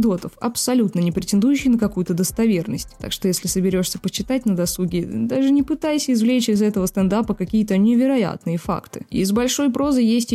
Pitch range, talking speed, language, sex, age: 190-240 Hz, 155 wpm, Russian, female, 20-39